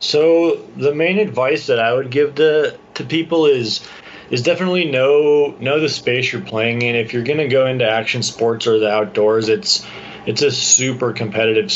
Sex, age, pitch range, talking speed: male, 20-39, 105-125 Hz, 190 wpm